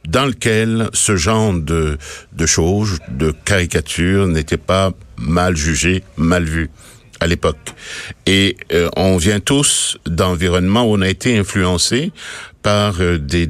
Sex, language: male, French